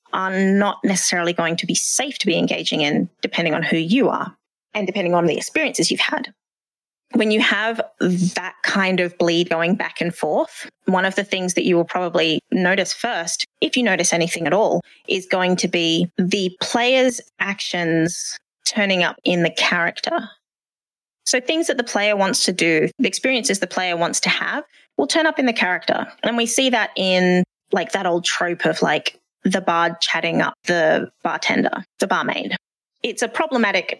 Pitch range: 175-235 Hz